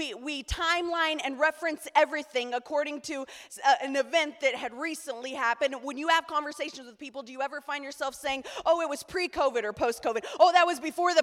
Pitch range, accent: 275-350 Hz, American